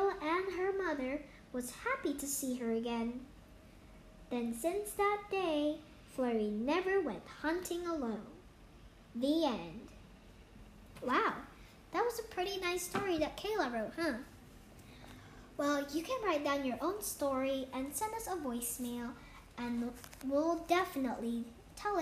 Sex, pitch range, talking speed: male, 245-350 Hz, 125 wpm